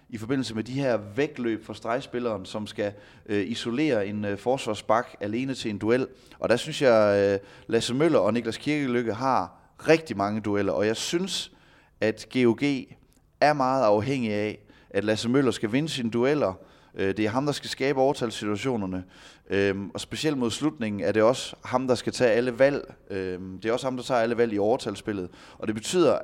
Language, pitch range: Danish, 100-130 Hz